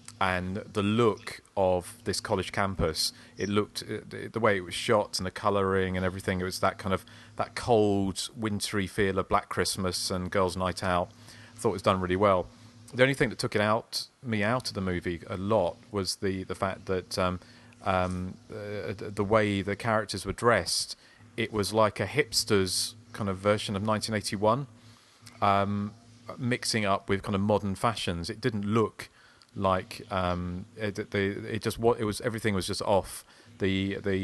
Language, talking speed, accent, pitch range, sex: English, 180 wpm, British, 95-110 Hz, male